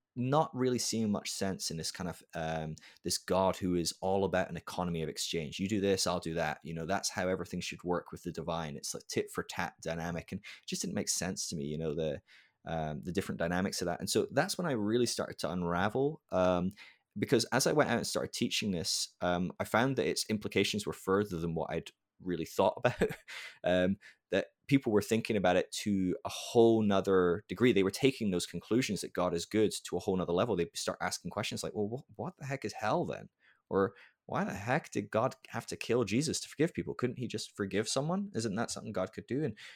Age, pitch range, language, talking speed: 20-39, 90-125 Hz, English, 230 wpm